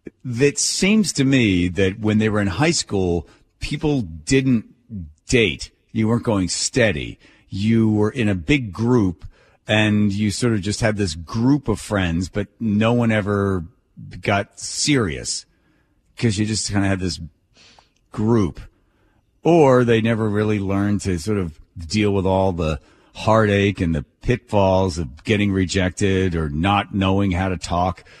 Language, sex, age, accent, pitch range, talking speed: English, male, 40-59, American, 95-115 Hz, 155 wpm